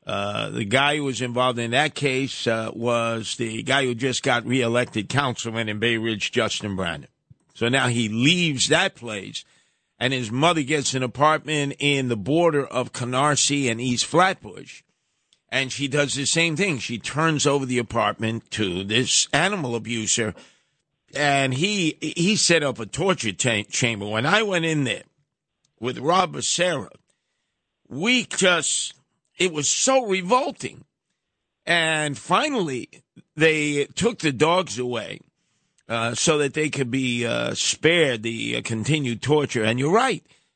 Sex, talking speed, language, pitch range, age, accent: male, 150 wpm, English, 125-165 Hz, 50-69, American